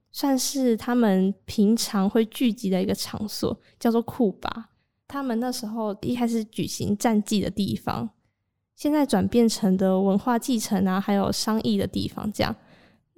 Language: Chinese